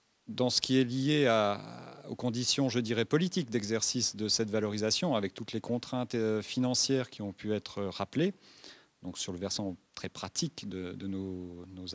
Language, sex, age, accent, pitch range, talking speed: French, male, 40-59, French, 100-130 Hz, 175 wpm